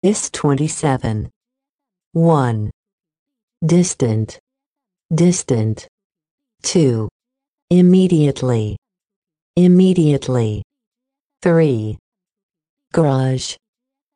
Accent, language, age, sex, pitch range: American, Chinese, 50-69, female, 105-175 Hz